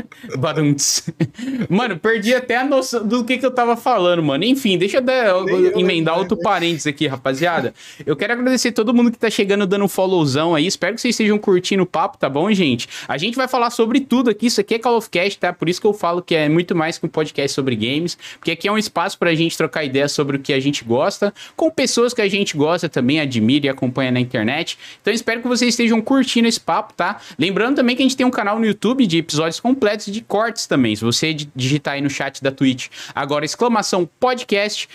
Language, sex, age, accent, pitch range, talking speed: Portuguese, male, 20-39, Brazilian, 150-225 Hz, 230 wpm